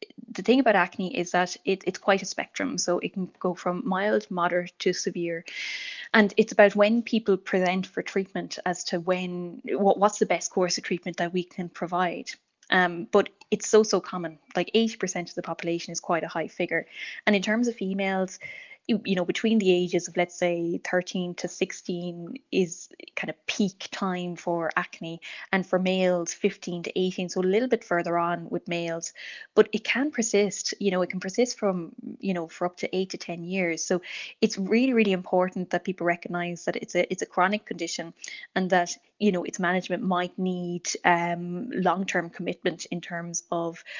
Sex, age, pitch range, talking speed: female, 10-29, 180-210 Hz, 195 wpm